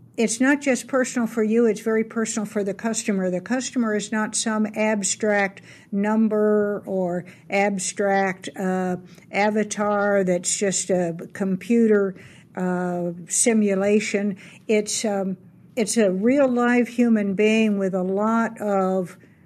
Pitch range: 185-220 Hz